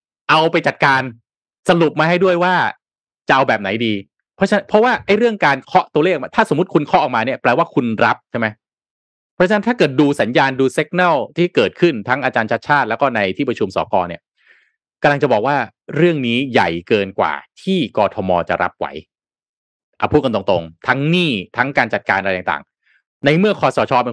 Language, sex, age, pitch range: Thai, male, 30-49, 115-160 Hz